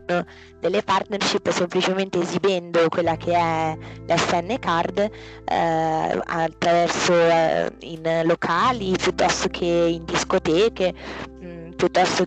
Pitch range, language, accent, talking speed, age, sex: 165-180 Hz, Italian, native, 100 wpm, 20-39, female